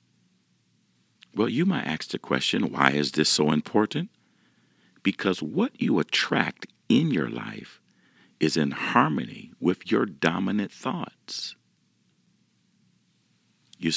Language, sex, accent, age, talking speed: English, male, American, 50-69, 110 wpm